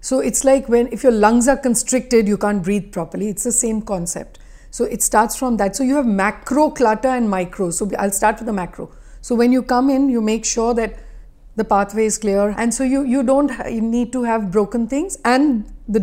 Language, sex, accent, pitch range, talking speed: English, female, Indian, 205-260 Hz, 230 wpm